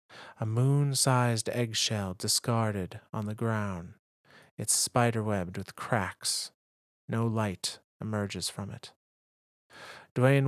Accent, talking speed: American, 95 wpm